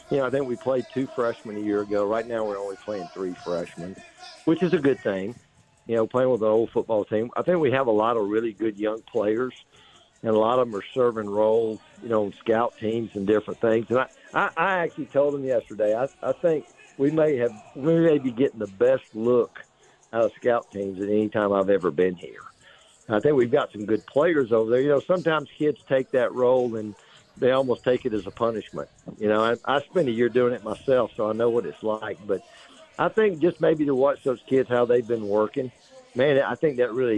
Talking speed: 240 wpm